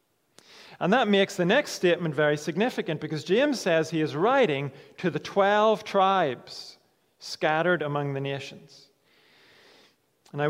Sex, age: male, 40-59